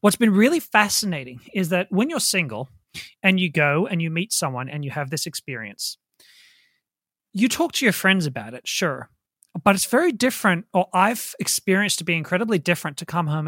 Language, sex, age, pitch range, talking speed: English, male, 30-49, 160-210 Hz, 190 wpm